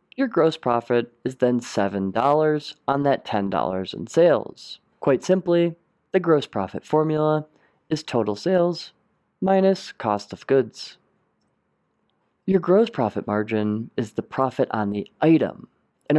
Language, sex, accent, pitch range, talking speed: English, male, American, 110-155 Hz, 135 wpm